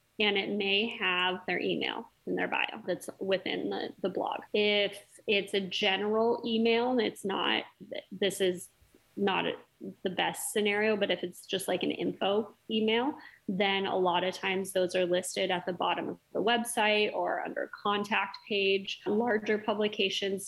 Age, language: 20-39, English